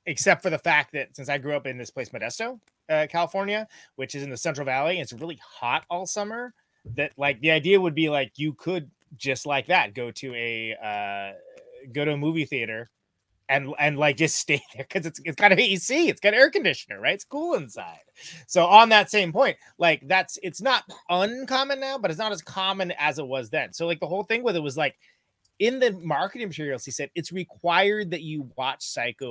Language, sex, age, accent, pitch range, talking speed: English, male, 20-39, American, 145-205 Hz, 220 wpm